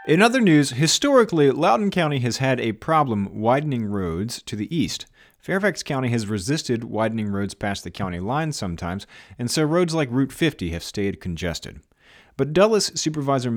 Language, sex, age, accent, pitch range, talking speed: English, male, 40-59, American, 105-145 Hz, 170 wpm